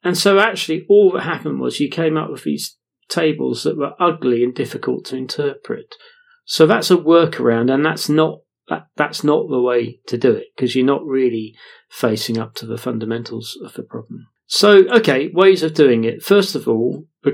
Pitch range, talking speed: 120-160 Hz, 195 wpm